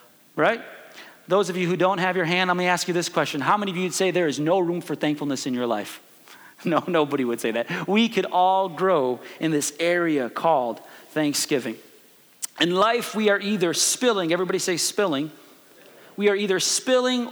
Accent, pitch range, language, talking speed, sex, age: American, 170-220 Hz, English, 195 wpm, male, 40-59